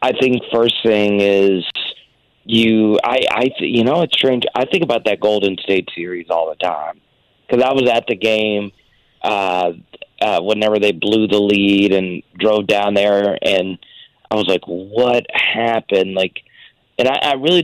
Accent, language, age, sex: American, English, 40-59, male